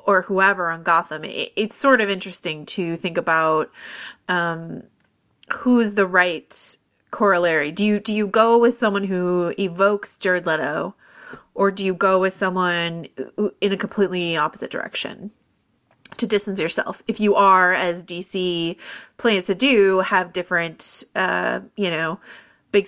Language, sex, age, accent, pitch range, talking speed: English, female, 30-49, American, 180-215 Hz, 145 wpm